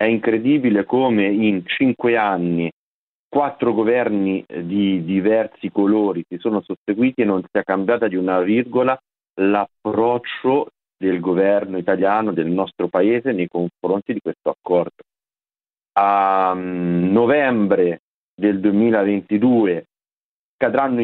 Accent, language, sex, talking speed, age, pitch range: native, Italian, male, 110 wpm, 40-59, 95-125 Hz